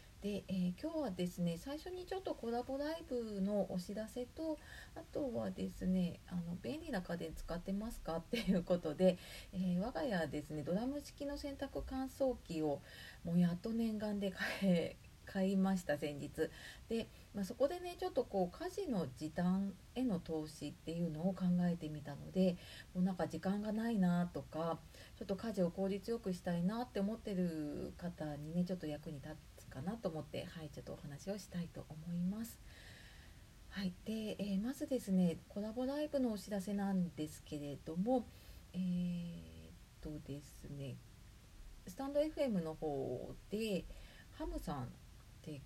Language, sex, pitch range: Japanese, female, 160-230 Hz